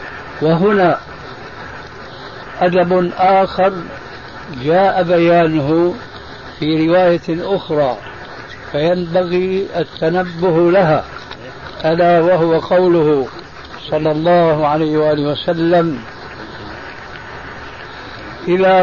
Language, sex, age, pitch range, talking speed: Arabic, male, 60-79, 150-180 Hz, 60 wpm